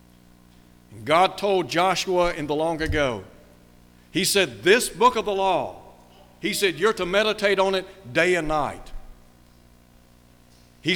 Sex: male